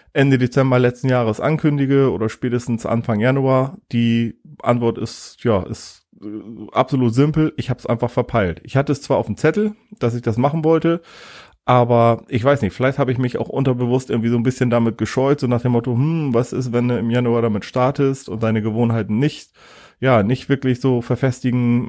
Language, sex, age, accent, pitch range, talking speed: German, male, 30-49, German, 115-130 Hz, 195 wpm